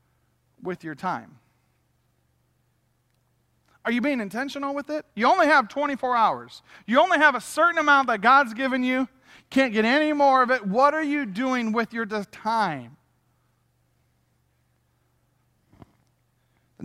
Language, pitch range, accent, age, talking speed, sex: English, 175-255 Hz, American, 40-59, 135 wpm, male